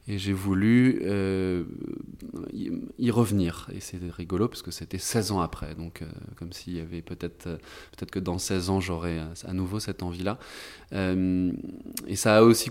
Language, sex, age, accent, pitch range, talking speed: French, male, 20-39, French, 90-110 Hz, 185 wpm